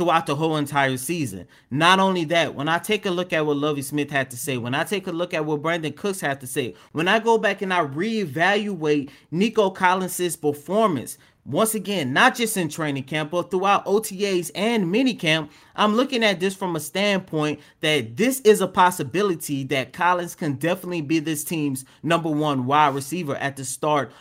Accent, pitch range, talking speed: American, 150-190 Hz, 200 wpm